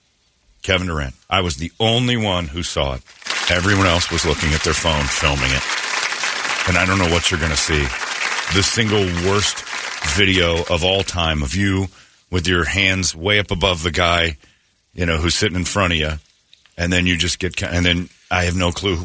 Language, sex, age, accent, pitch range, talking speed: English, male, 50-69, American, 90-115 Hz, 200 wpm